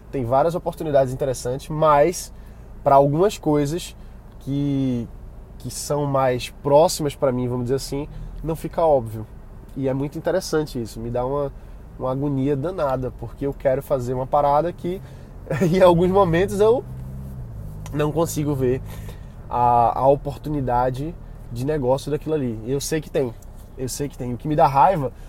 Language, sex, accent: Portuguese, male, Brazilian